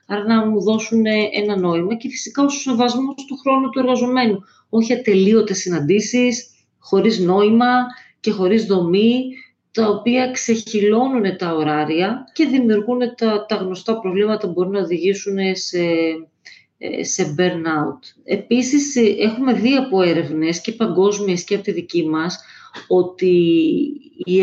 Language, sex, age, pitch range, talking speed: Greek, female, 40-59, 180-230 Hz, 135 wpm